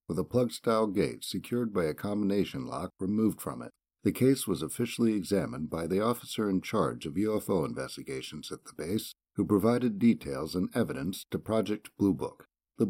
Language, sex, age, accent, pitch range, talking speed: English, male, 60-79, American, 95-120 Hz, 175 wpm